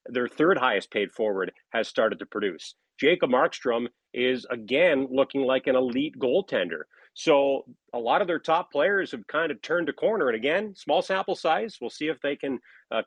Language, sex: English, male